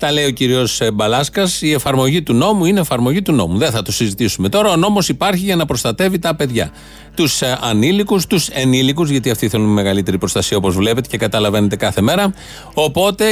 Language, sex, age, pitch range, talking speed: Greek, male, 30-49, 130-180 Hz, 190 wpm